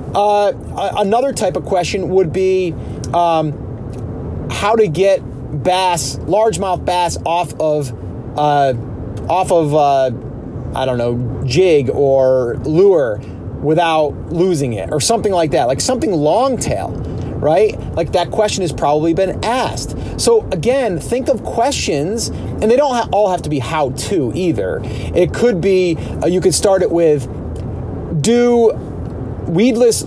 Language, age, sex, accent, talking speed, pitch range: English, 30-49, male, American, 140 wpm, 130-190 Hz